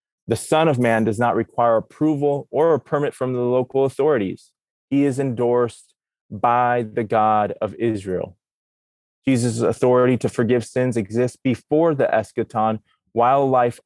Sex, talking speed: male, 145 wpm